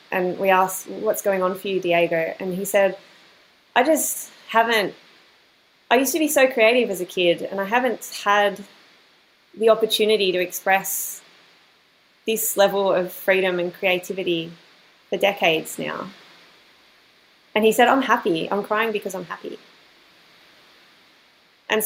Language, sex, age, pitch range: English, female, 20-39, 180-215 Hz